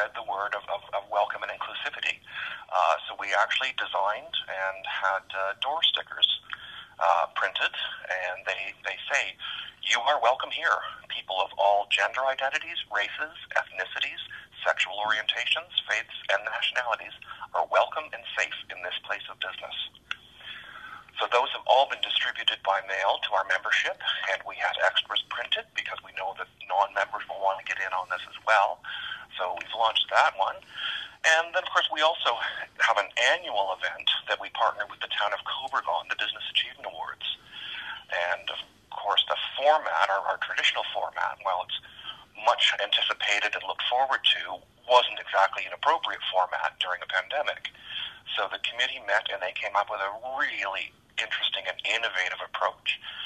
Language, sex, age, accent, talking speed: English, male, 50-69, American, 165 wpm